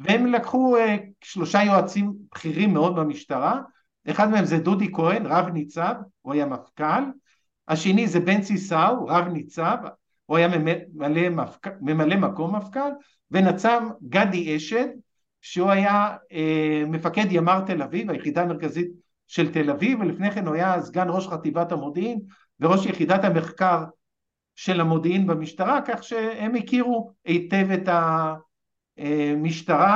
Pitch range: 160-215 Hz